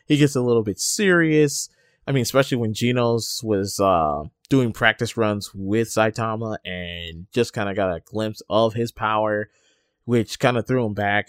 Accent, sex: American, male